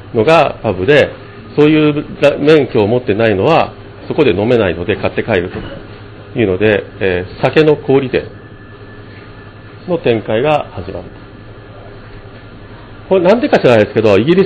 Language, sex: Japanese, male